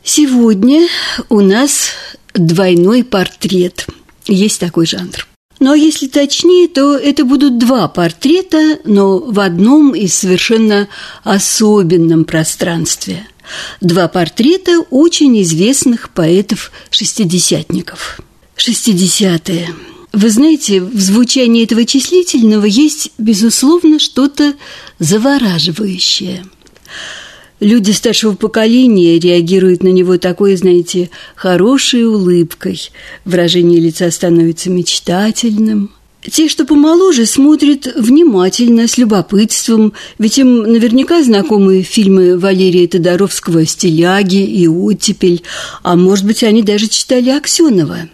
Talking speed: 95 wpm